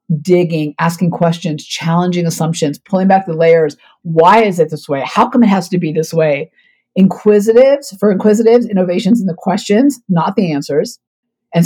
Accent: American